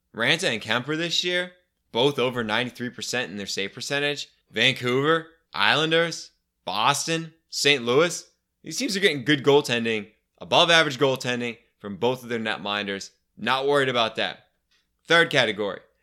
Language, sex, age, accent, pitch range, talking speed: English, male, 20-39, American, 110-150 Hz, 140 wpm